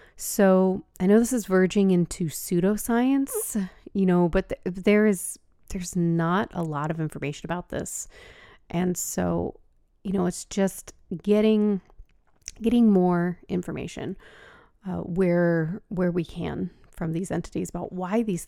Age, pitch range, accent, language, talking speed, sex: 30-49, 165-195 Hz, American, English, 140 wpm, female